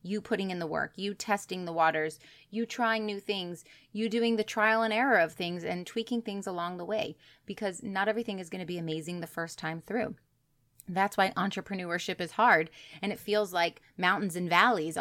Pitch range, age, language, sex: 170-210 Hz, 30-49, English, female